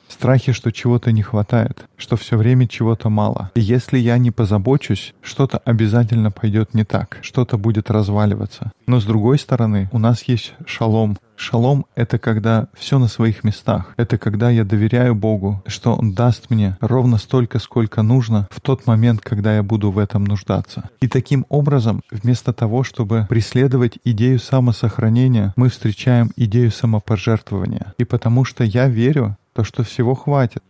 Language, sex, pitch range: Russian, male, 110-125 Hz